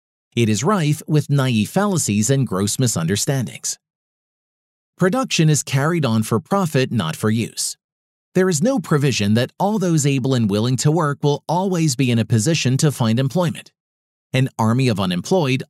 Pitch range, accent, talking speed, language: 115-165 Hz, American, 165 wpm, English